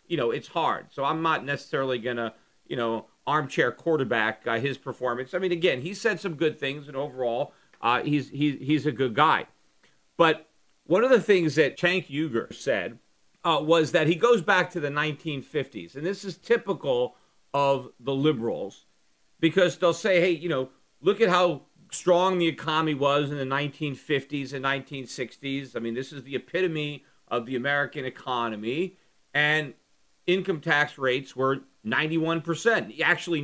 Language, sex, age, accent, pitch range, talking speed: English, male, 40-59, American, 130-170 Hz, 170 wpm